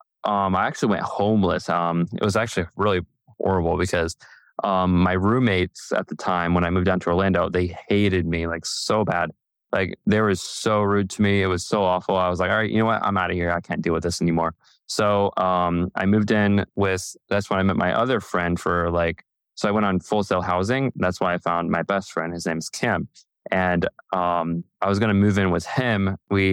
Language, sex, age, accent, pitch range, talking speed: English, male, 20-39, American, 90-105 Hz, 225 wpm